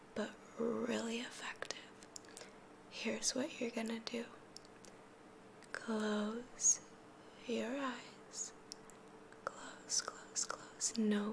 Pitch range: 220-250 Hz